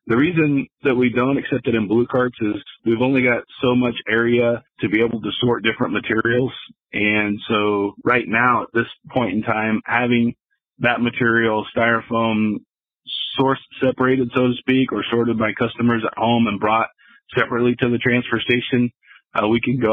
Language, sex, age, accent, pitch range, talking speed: English, male, 40-59, American, 110-125 Hz, 180 wpm